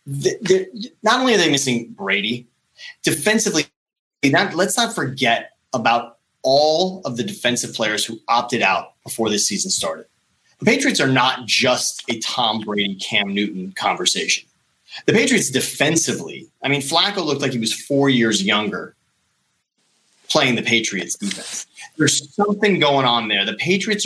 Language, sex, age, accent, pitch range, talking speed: English, male, 30-49, American, 110-150 Hz, 145 wpm